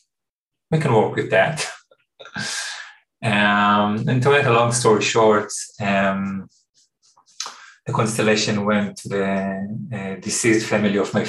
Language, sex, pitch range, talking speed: Finnish, male, 105-120 Hz, 130 wpm